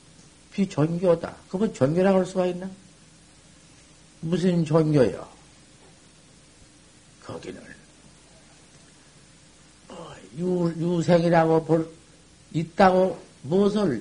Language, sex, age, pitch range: Korean, male, 60-79, 155-205 Hz